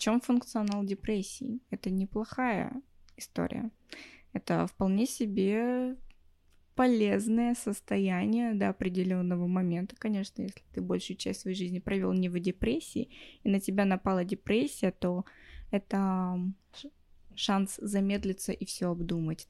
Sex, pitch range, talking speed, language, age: female, 175-220 Hz, 115 wpm, Russian, 20-39